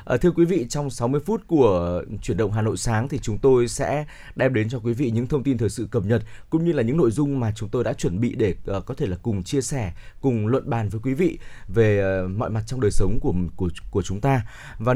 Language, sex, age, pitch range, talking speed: Vietnamese, male, 20-39, 105-140 Hz, 265 wpm